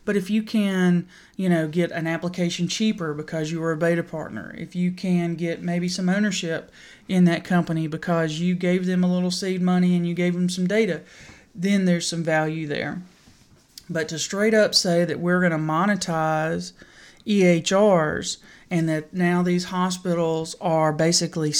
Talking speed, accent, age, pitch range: 175 wpm, American, 30-49, 160-180 Hz